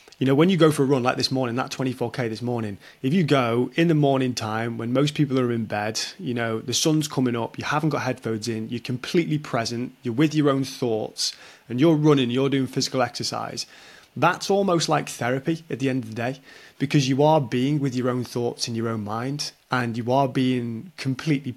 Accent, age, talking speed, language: British, 20-39, 225 wpm, English